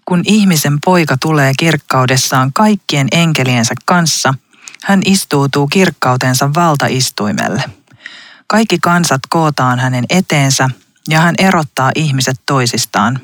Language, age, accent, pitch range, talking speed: Finnish, 40-59, native, 130-170 Hz, 100 wpm